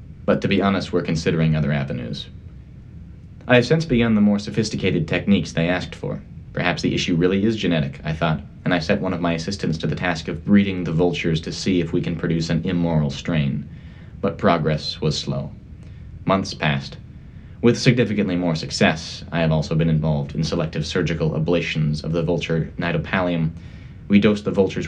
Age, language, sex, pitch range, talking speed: 30-49, English, male, 80-100 Hz, 185 wpm